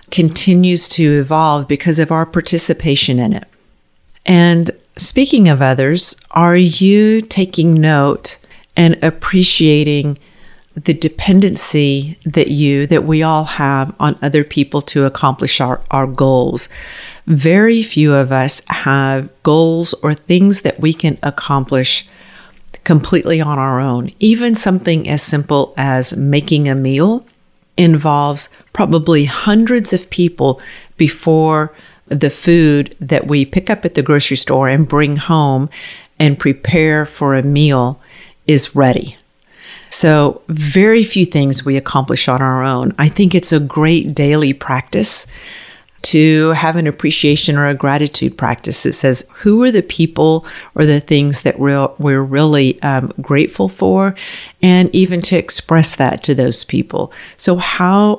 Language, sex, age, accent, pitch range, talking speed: English, female, 50-69, American, 140-170 Hz, 140 wpm